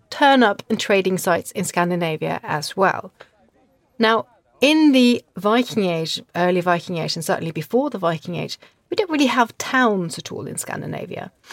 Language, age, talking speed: English, 30-49, 165 wpm